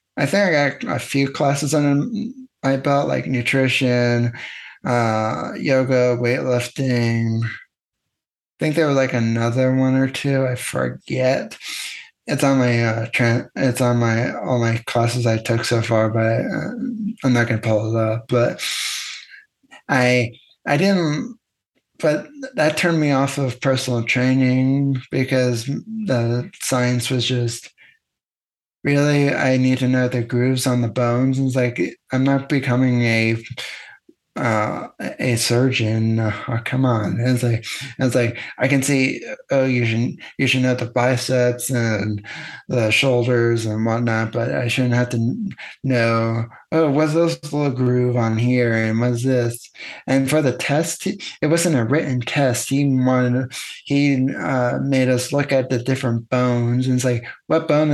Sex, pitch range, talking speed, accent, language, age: male, 120-140 Hz, 155 wpm, American, English, 20-39